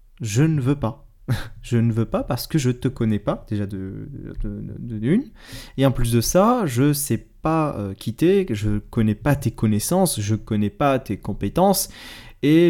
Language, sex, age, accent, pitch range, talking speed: French, male, 20-39, French, 110-165 Hz, 185 wpm